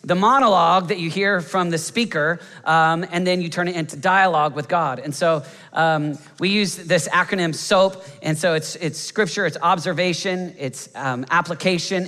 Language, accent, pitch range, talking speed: English, American, 140-180 Hz, 180 wpm